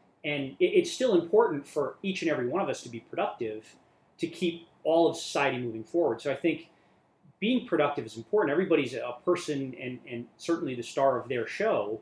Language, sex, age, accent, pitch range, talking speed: English, male, 30-49, American, 135-175 Hz, 195 wpm